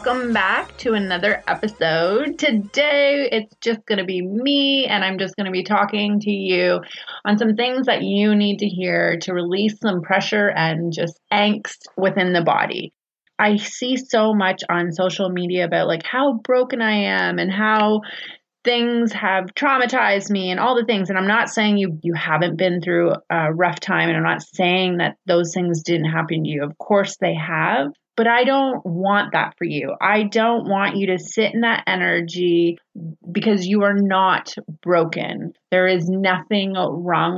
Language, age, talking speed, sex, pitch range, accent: English, 30-49, 185 wpm, female, 175-215 Hz, American